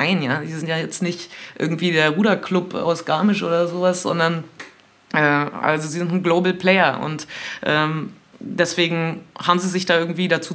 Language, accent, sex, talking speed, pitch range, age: German, German, female, 175 wpm, 165-185 Hz, 20-39